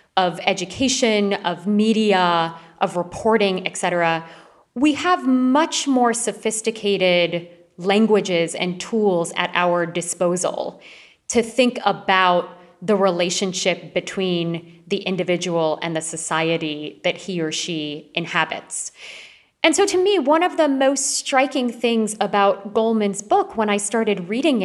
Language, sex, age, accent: English, female, 30-49, American